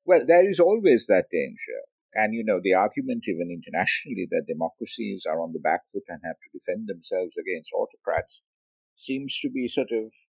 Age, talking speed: 50-69, 185 wpm